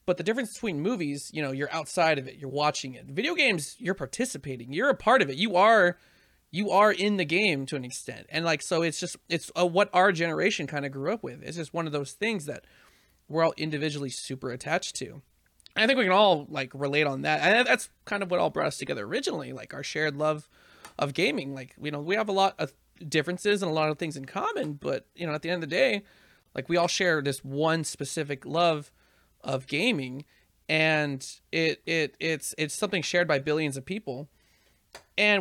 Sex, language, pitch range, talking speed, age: male, English, 140-185 Hz, 225 wpm, 30-49